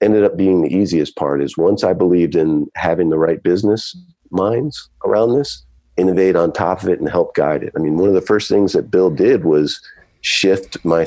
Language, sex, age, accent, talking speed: English, male, 50-69, American, 215 wpm